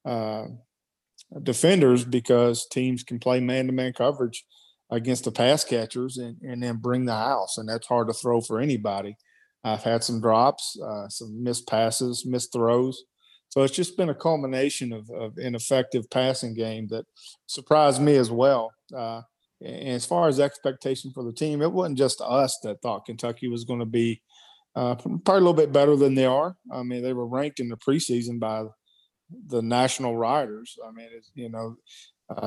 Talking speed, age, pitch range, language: 185 wpm, 40-59, 115-135 Hz, English